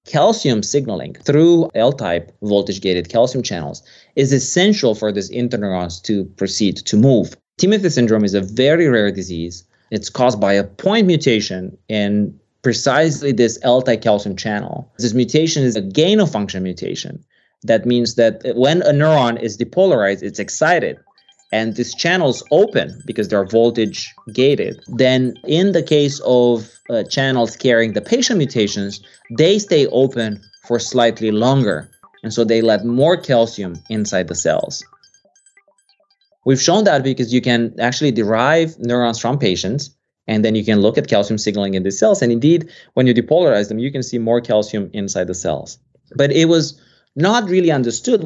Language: English